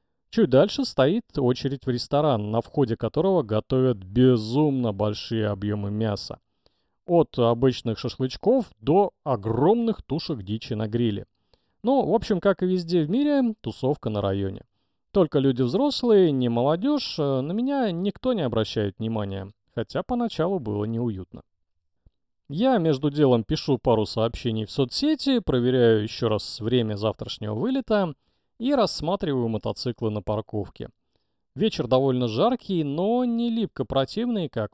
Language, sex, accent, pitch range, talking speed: Russian, male, native, 110-185 Hz, 130 wpm